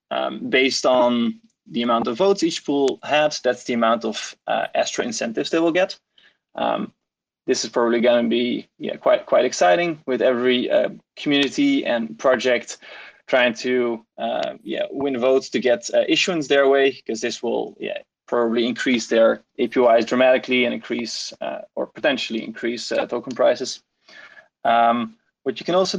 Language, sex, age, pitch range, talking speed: English, male, 20-39, 120-175 Hz, 165 wpm